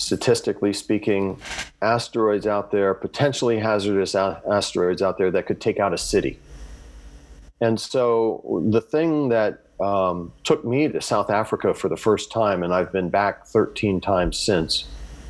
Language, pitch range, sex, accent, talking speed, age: English, 95-115 Hz, male, American, 150 wpm, 40-59